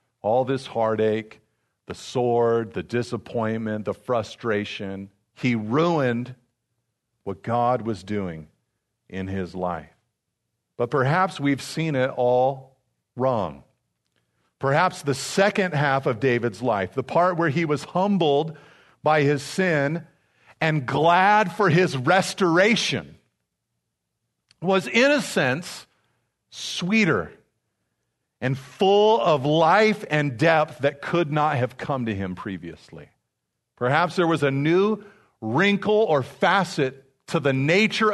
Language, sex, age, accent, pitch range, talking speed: English, male, 50-69, American, 120-175 Hz, 120 wpm